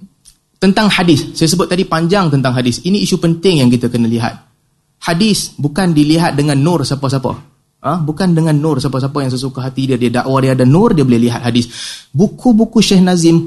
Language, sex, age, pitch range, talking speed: Malay, male, 30-49, 145-200 Hz, 195 wpm